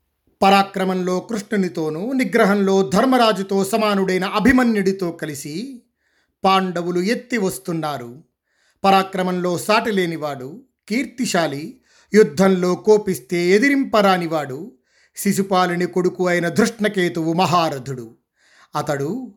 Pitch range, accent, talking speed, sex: 165-205 Hz, native, 70 wpm, male